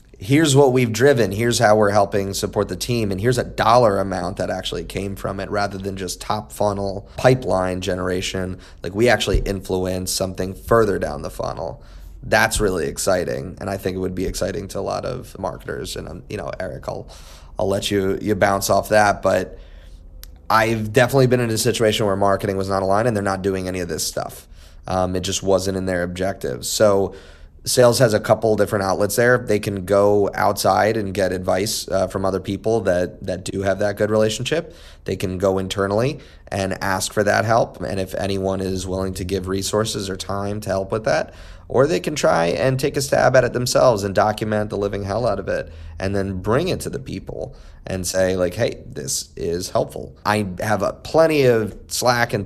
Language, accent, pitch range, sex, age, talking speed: English, American, 95-110 Hz, male, 20-39, 205 wpm